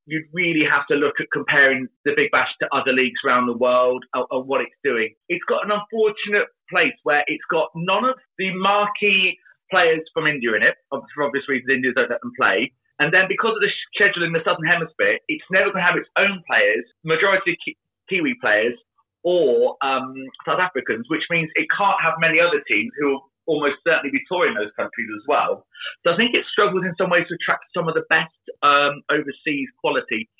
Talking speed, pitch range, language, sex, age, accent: 210 wpm, 140-195 Hz, English, male, 30-49, British